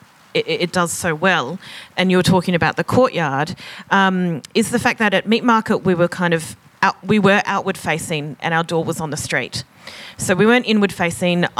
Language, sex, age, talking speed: English, female, 30-49, 195 wpm